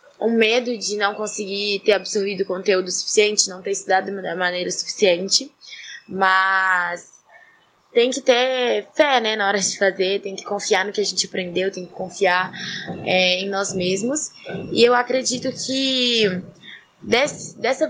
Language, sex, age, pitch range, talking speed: Portuguese, female, 20-39, 195-245 Hz, 150 wpm